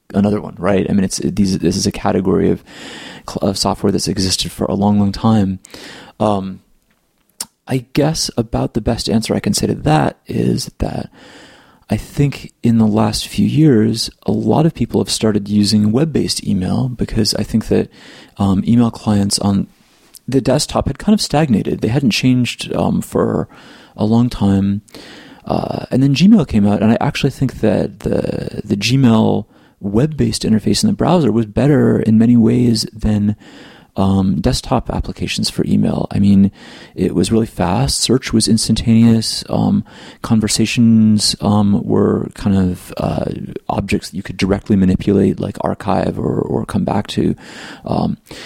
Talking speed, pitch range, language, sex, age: 165 wpm, 100-120 Hz, English, male, 30-49